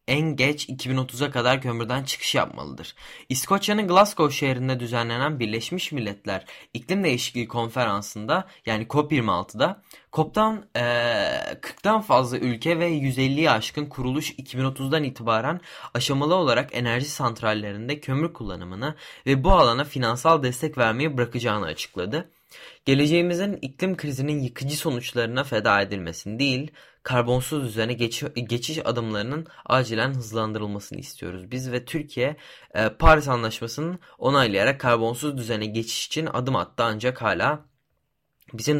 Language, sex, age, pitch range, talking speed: Turkish, male, 20-39, 115-150 Hz, 115 wpm